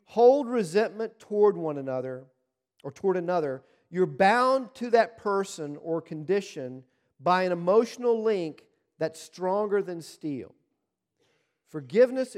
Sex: male